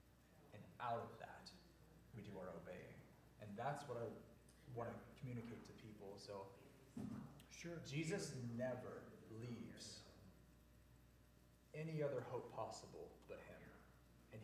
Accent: American